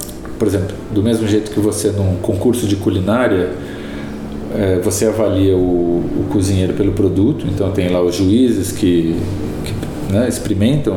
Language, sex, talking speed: Portuguese, male, 155 wpm